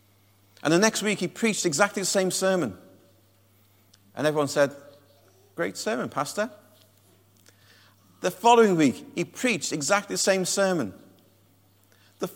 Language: English